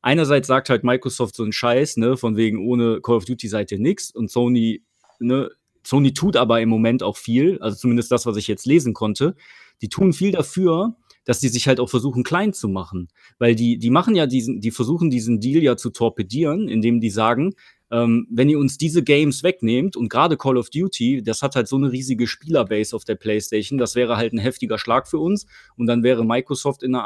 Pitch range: 115-145 Hz